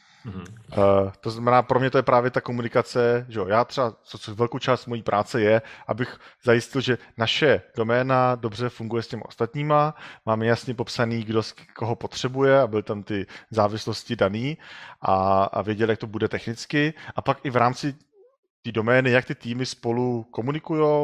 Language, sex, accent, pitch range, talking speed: Czech, male, native, 110-130 Hz, 175 wpm